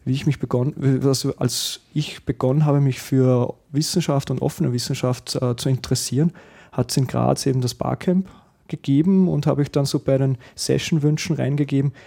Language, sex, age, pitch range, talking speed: German, male, 30-49, 125-145 Hz, 170 wpm